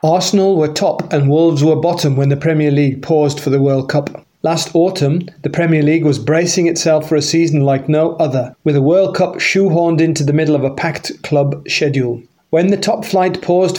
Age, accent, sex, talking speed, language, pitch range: 30-49, British, male, 210 wpm, English, 145-175 Hz